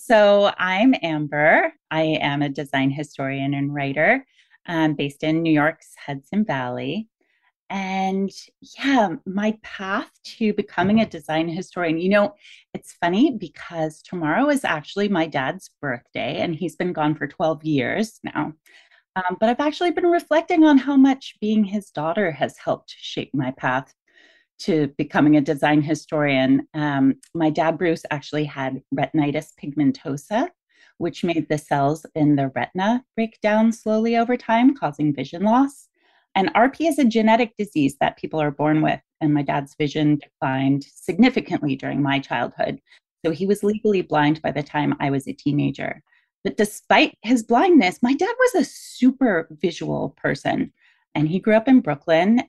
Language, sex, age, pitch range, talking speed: English, female, 30-49, 150-220 Hz, 160 wpm